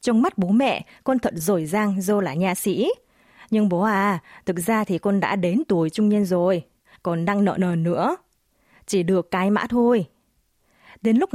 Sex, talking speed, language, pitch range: female, 195 wpm, Vietnamese, 175-235 Hz